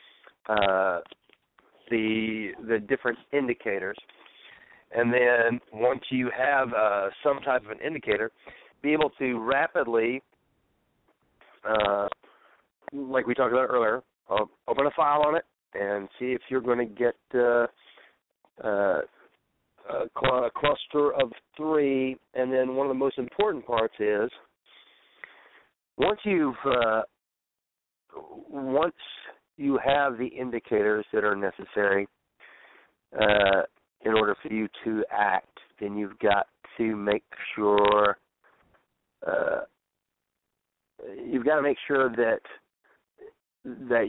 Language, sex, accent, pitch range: English, male, American, 110-140 Hz